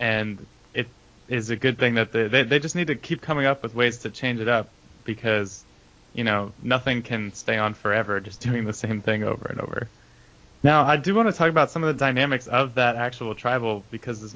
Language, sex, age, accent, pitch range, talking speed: English, male, 20-39, American, 105-130 Hz, 230 wpm